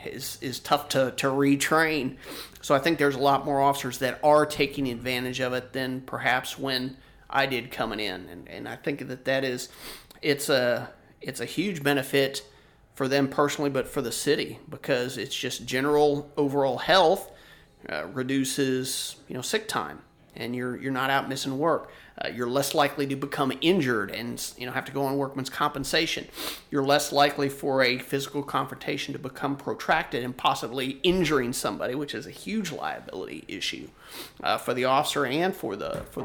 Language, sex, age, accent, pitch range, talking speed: English, male, 30-49, American, 130-145 Hz, 180 wpm